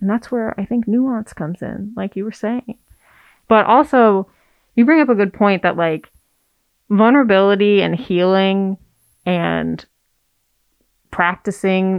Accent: American